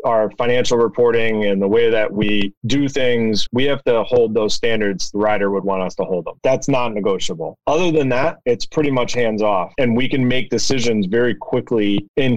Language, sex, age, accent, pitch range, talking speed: English, male, 30-49, American, 110-130 Hz, 200 wpm